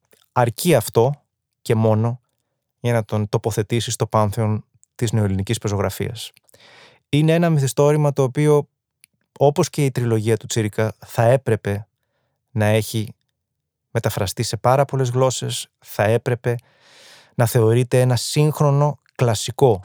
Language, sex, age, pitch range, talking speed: Greek, male, 20-39, 110-130 Hz, 120 wpm